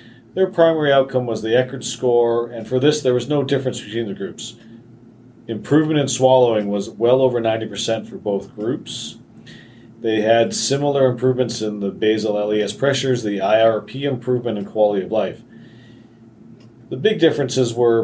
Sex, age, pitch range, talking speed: male, 40-59, 110-130 Hz, 155 wpm